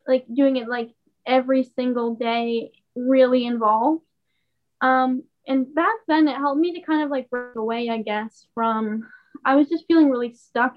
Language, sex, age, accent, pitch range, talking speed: English, female, 10-29, American, 240-280 Hz, 175 wpm